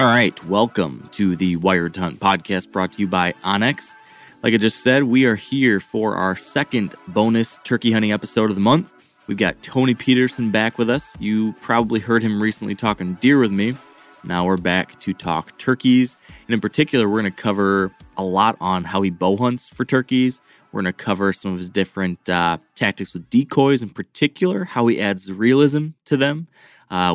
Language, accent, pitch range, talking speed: English, American, 95-120 Hz, 195 wpm